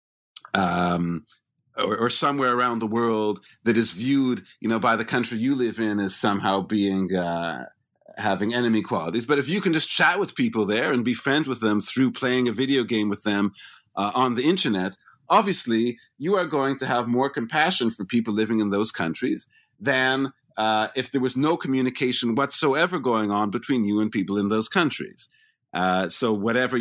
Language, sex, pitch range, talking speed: English, male, 105-130 Hz, 190 wpm